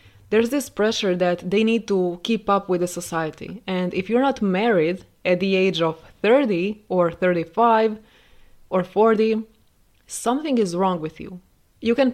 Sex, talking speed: female, 165 wpm